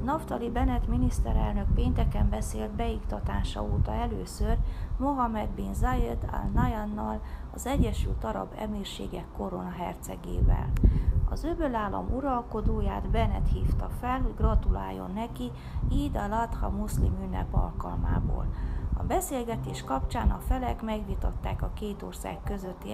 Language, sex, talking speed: Hungarian, female, 110 wpm